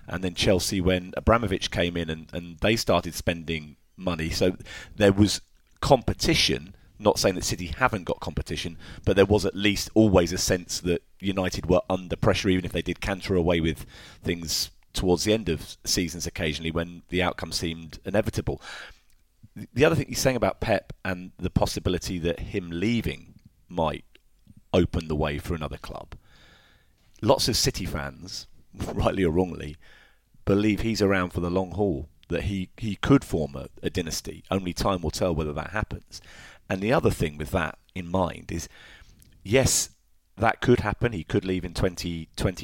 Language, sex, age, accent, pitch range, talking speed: English, male, 30-49, British, 85-105 Hz, 175 wpm